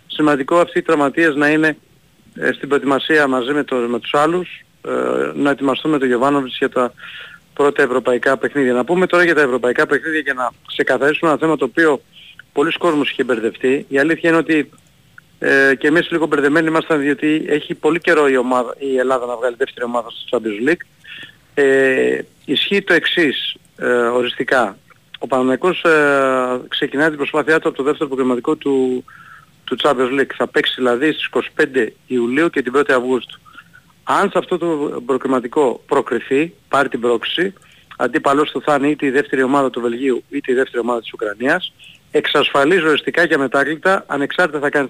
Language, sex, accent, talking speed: Greek, male, native, 175 wpm